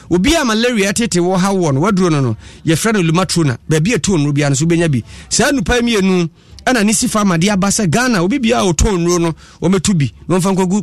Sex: male